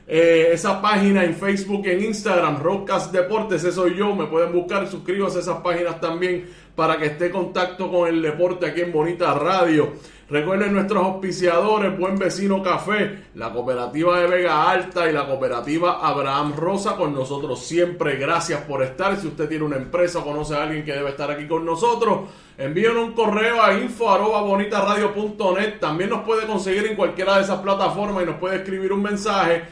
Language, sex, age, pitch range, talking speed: Spanish, male, 20-39, 165-200 Hz, 180 wpm